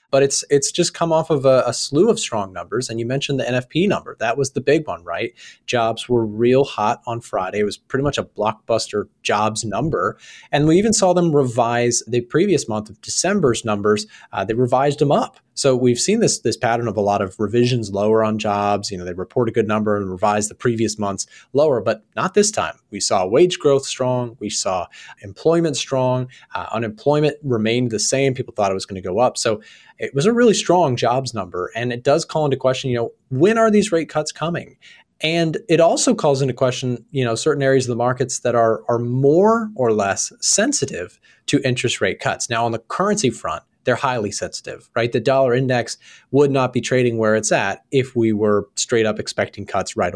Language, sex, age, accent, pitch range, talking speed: English, male, 30-49, American, 110-140 Hz, 220 wpm